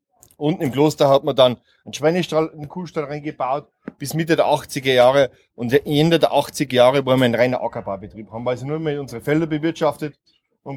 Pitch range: 140-165 Hz